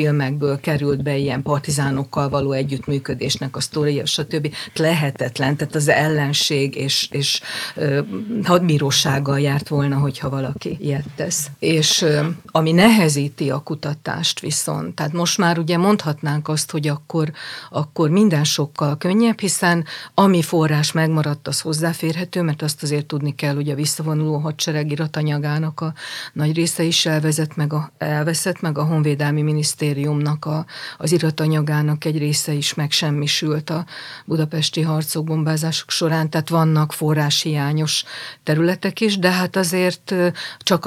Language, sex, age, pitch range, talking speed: Hungarian, female, 50-69, 145-160 Hz, 130 wpm